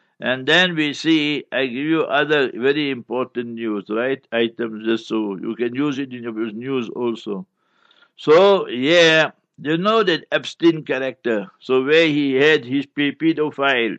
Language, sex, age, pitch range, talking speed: English, male, 60-79, 125-165 Hz, 155 wpm